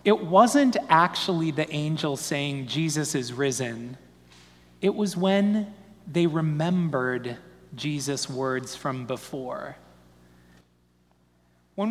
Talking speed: 95 wpm